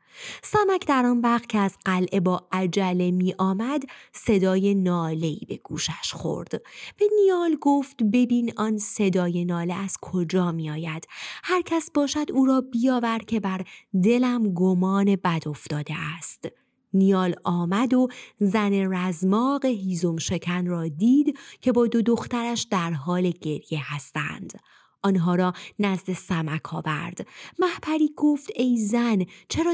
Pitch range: 175-245 Hz